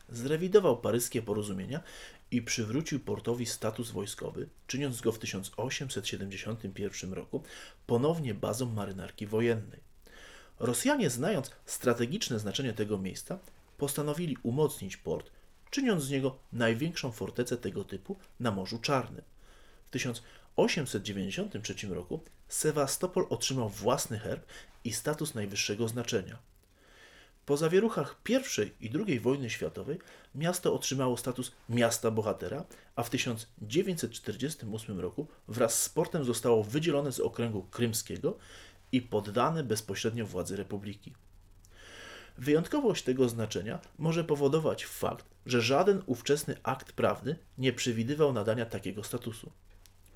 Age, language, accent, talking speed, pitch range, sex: 30-49, Polish, native, 110 wpm, 105-140 Hz, male